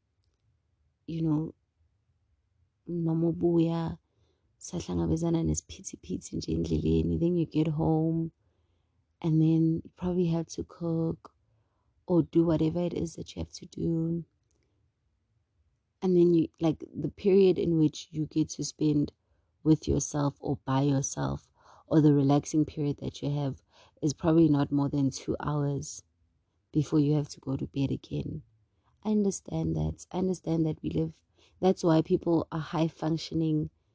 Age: 30-49